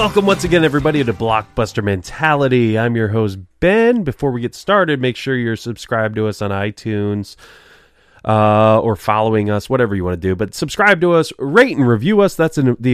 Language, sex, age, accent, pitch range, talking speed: English, male, 20-39, American, 100-125 Hz, 195 wpm